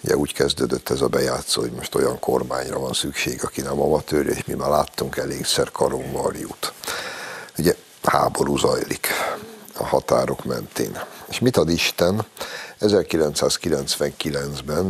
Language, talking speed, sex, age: Hungarian, 135 wpm, male, 60-79